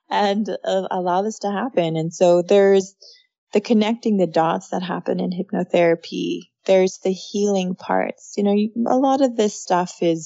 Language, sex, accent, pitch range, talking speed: English, female, American, 175-215 Hz, 175 wpm